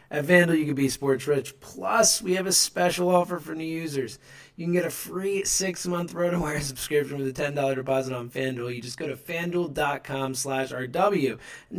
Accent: American